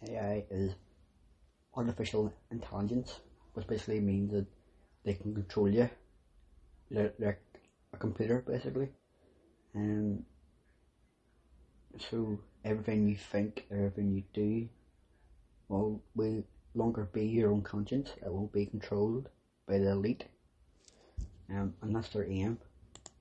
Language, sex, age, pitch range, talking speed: English, male, 30-49, 100-115 Hz, 110 wpm